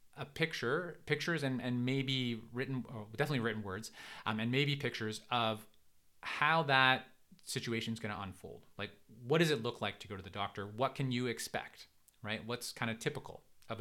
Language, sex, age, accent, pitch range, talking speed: English, male, 30-49, American, 105-130 Hz, 190 wpm